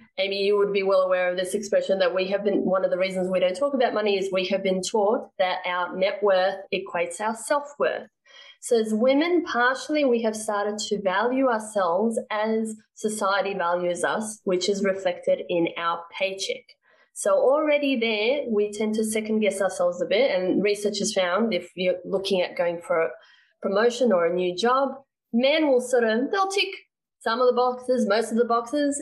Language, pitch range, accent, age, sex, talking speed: English, 195-250 Hz, Australian, 20-39, female, 195 wpm